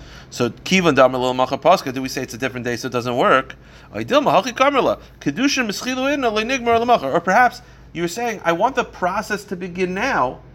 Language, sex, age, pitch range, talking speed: English, male, 30-49, 125-190 Hz, 140 wpm